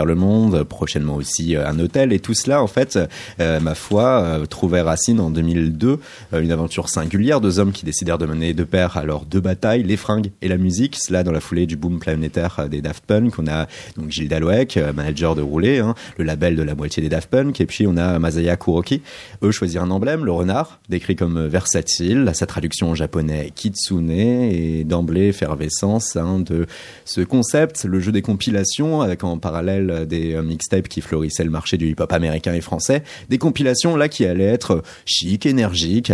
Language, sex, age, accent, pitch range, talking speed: French, male, 30-49, French, 80-100 Hz, 200 wpm